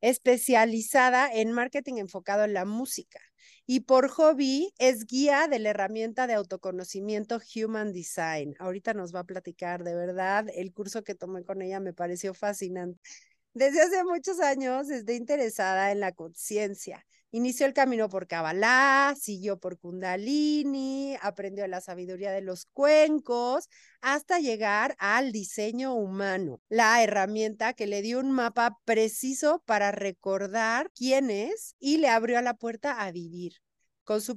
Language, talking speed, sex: Spanish, 145 wpm, female